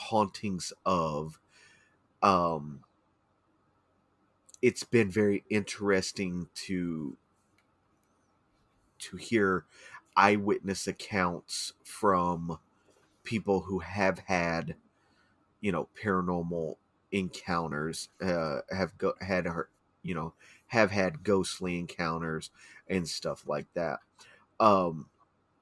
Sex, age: male, 30-49